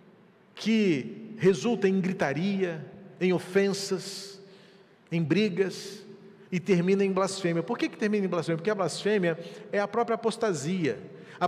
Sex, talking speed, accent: male, 135 wpm, Brazilian